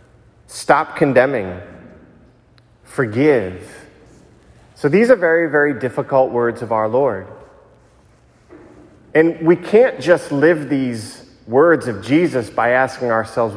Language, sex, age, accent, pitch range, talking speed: English, male, 40-59, American, 115-150 Hz, 110 wpm